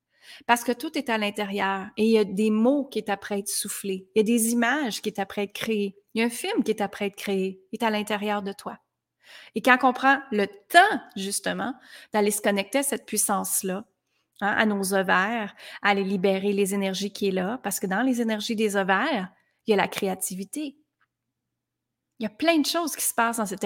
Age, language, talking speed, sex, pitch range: 30-49, French, 230 wpm, female, 200-260 Hz